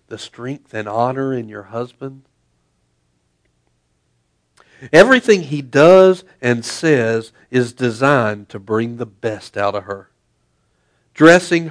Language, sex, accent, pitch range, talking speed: English, male, American, 105-140 Hz, 115 wpm